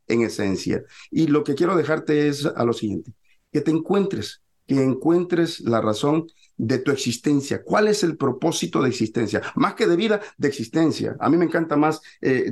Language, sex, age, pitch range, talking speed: Spanish, male, 50-69, 115-160 Hz, 185 wpm